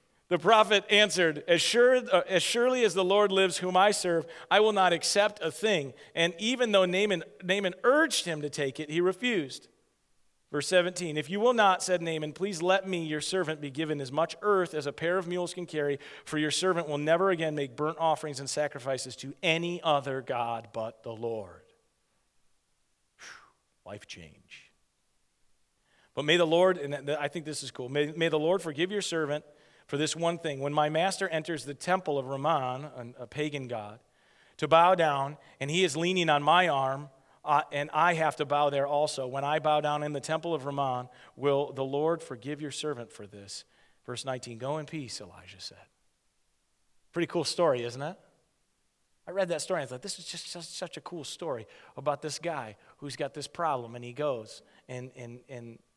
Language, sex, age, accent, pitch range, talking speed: English, male, 40-59, American, 135-175 Hz, 195 wpm